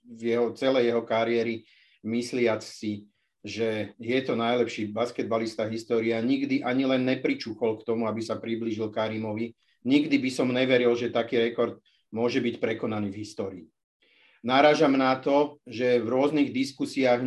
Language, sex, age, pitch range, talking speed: Czech, male, 40-59, 115-130 Hz, 150 wpm